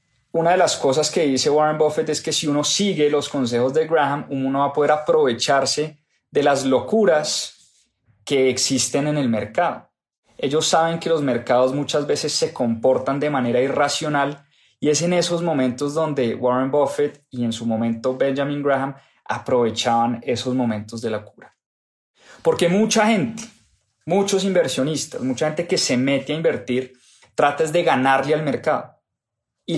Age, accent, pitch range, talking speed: 20-39, Colombian, 130-165 Hz, 165 wpm